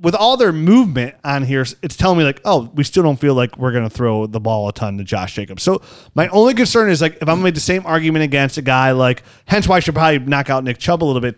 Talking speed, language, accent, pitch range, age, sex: 300 wpm, English, American, 135-185 Hz, 30-49, male